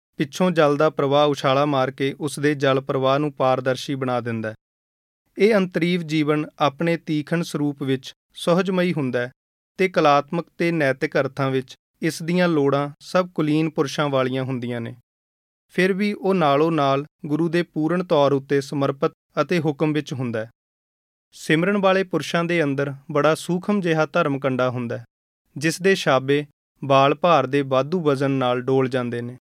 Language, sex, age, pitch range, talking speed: Punjabi, male, 30-49, 130-170 Hz, 120 wpm